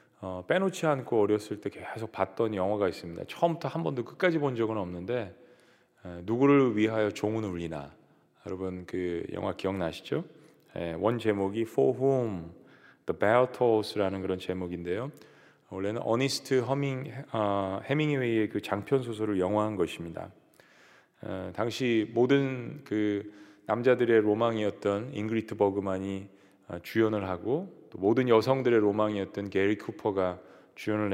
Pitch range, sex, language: 95-120 Hz, male, Korean